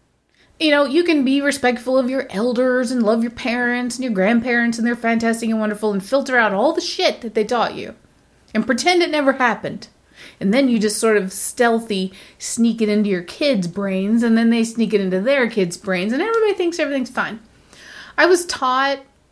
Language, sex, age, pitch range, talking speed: English, female, 30-49, 195-245 Hz, 205 wpm